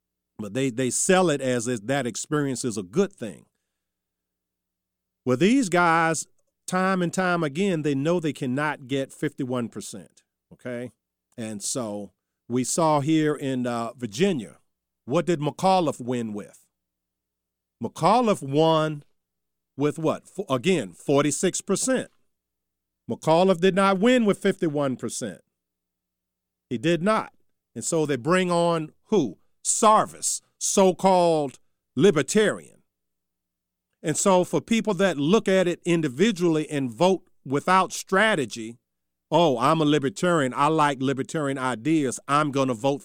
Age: 50-69